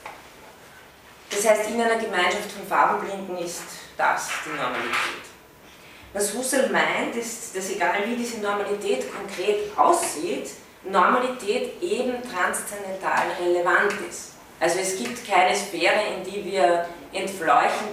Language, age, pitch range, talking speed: German, 30-49, 170-215 Hz, 120 wpm